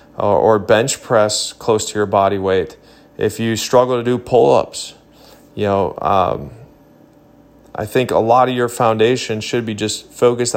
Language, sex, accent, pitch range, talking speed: English, male, American, 110-125 Hz, 160 wpm